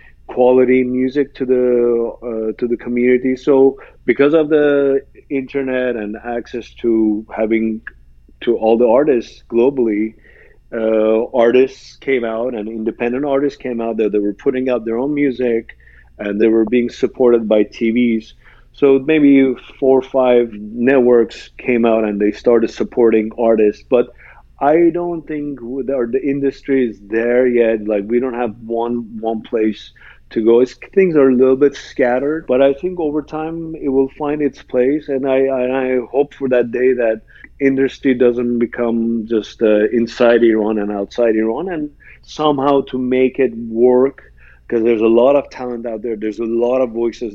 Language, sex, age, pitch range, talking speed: English, male, 40-59, 110-135 Hz, 170 wpm